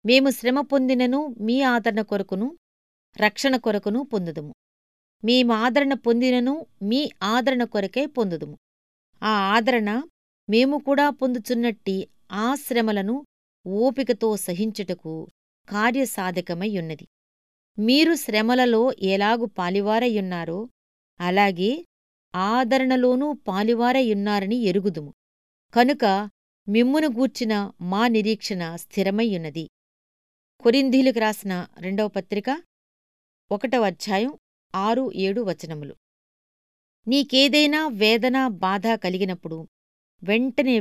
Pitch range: 190-255 Hz